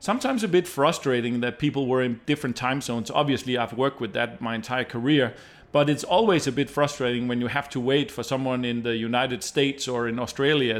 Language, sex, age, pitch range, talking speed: English, male, 40-59, 120-140 Hz, 215 wpm